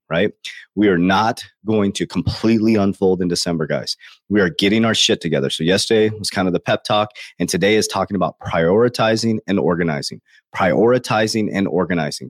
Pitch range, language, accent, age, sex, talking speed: 100-125 Hz, English, American, 30-49, male, 175 wpm